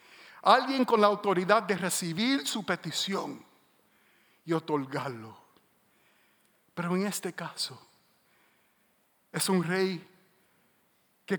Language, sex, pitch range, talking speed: English, male, 205-275 Hz, 95 wpm